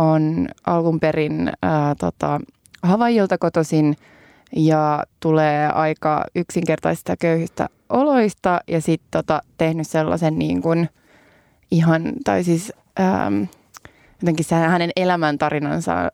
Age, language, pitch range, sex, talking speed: 20-39, Finnish, 160-200 Hz, female, 95 wpm